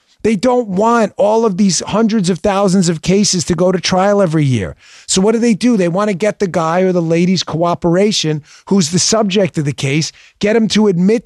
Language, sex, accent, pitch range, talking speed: English, male, American, 160-215 Hz, 225 wpm